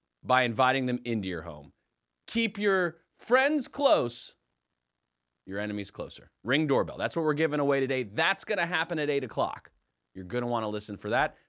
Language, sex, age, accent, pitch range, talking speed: English, male, 30-49, American, 115-165 Hz, 170 wpm